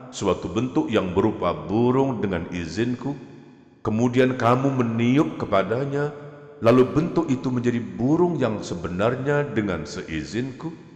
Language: Indonesian